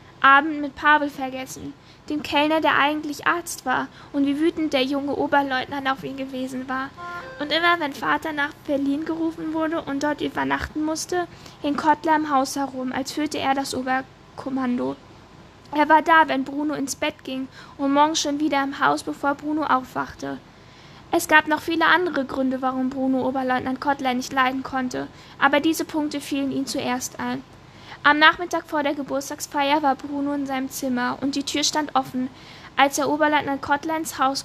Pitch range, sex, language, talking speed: 260-300 Hz, female, German, 175 wpm